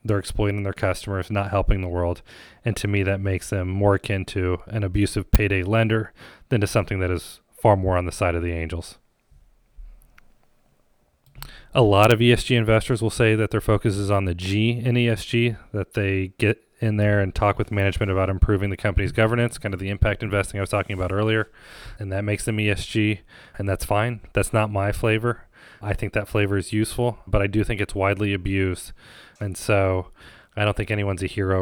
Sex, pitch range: male, 90-105 Hz